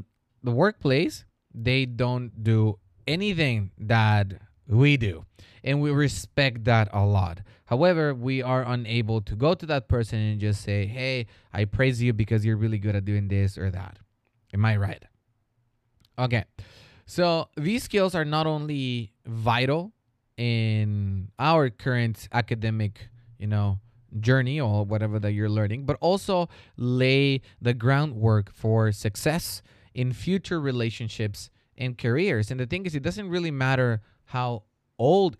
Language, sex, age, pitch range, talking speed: English, male, 20-39, 110-135 Hz, 145 wpm